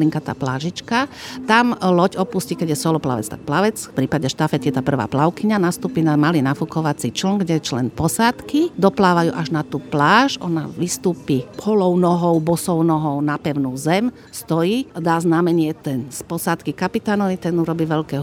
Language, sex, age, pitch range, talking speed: Slovak, female, 50-69, 155-185 Hz, 170 wpm